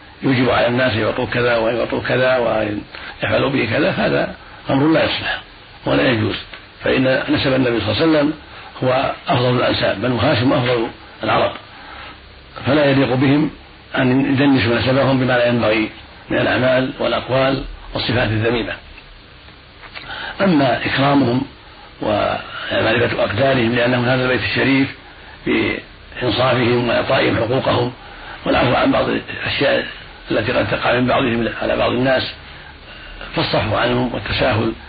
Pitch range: 115-130 Hz